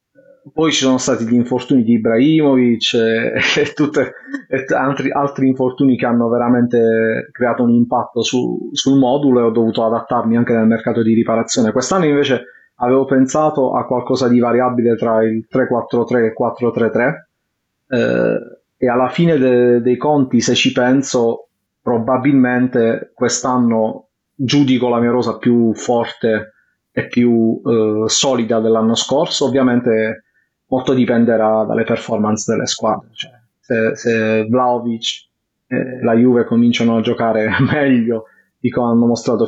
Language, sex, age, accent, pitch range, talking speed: Italian, male, 30-49, native, 115-130 Hz, 130 wpm